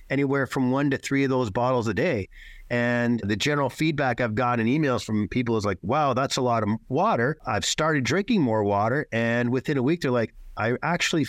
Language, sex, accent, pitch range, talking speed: English, male, American, 115-150 Hz, 215 wpm